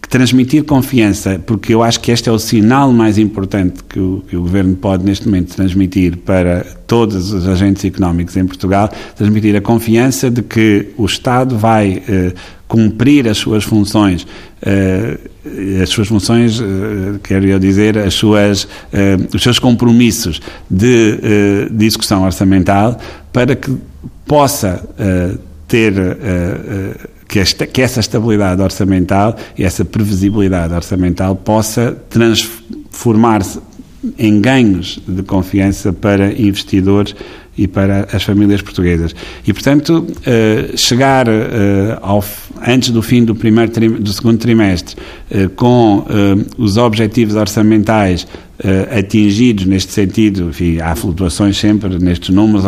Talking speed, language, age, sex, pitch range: 135 wpm, Portuguese, 60-79, male, 95-115 Hz